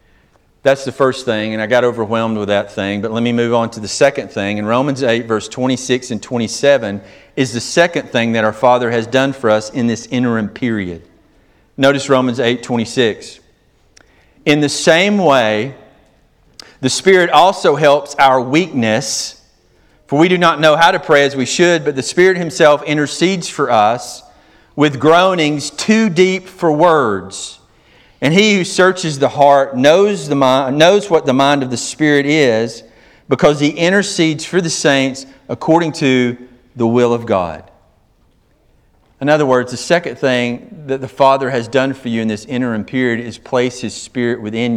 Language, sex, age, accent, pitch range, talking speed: English, male, 40-59, American, 115-150 Hz, 175 wpm